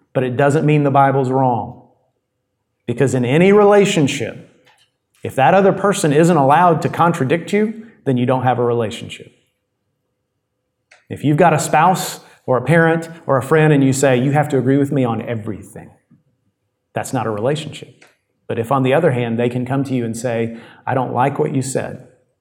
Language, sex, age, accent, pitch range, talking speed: English, male, 40-59, American, 125-160 Hz, 190 wpm